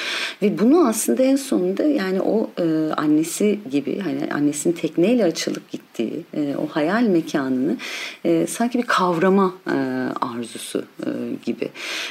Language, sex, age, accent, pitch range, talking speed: Turkish, female, 40-59, native, 155-230 Hz, 105 wpm